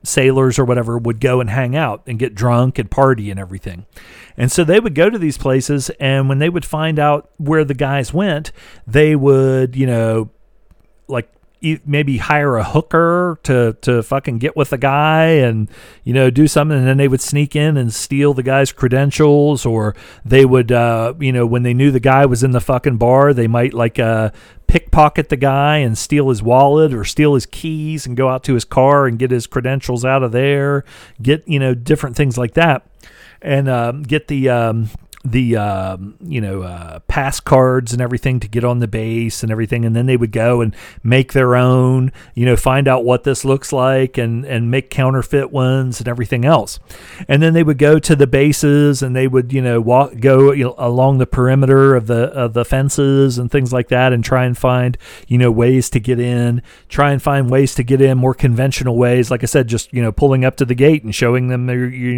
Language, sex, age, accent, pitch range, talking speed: English, male, 40-59, American, 120-140 Hz, 220 wpm